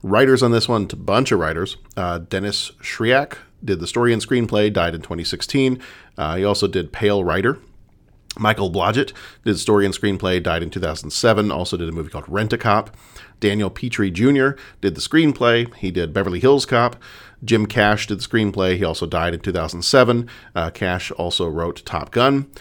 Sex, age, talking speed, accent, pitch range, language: male, 40-59, 180 wpm, American, 95-120 Hz, English